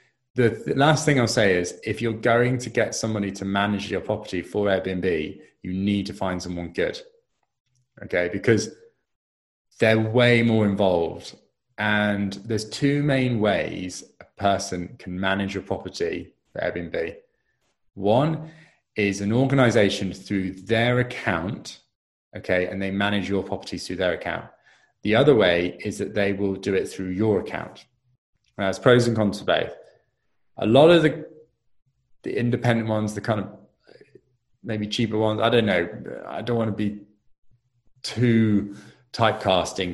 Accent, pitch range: British, 100-125 Hz